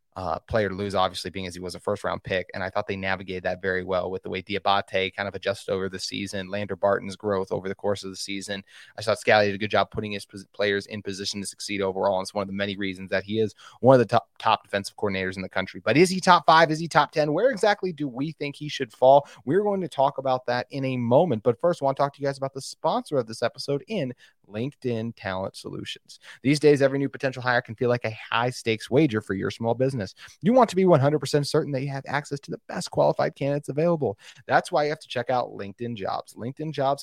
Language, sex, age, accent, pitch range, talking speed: English, male, 30-49, American, 100-140 Hz, 265 wpm